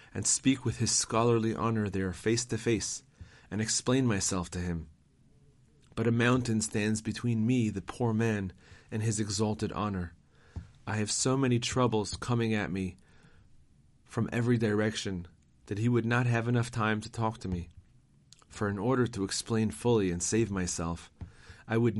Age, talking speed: 30-49, 165 wpm